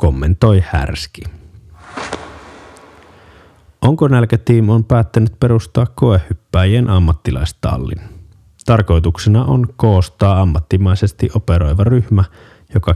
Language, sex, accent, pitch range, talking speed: Finnish, male, native, 85-105 Hz, 75 wpm